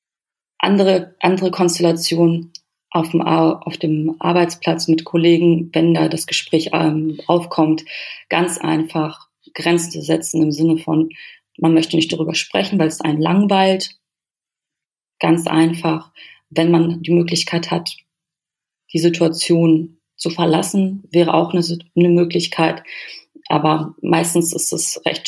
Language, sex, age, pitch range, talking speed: German, female, 30-49, 160-175 Hz, 130 wpm